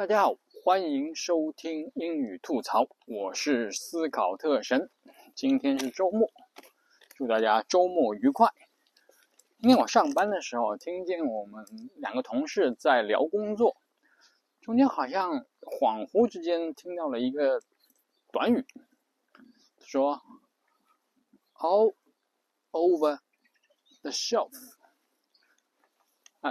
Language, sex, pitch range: Chinese, male, 160-270 Hz